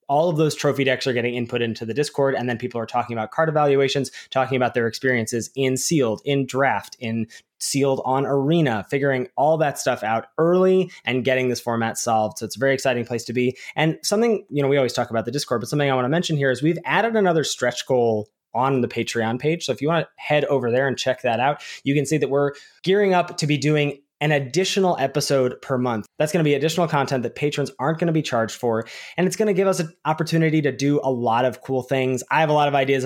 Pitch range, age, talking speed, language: 125-155 Hz, 20-39, 245 wpm, English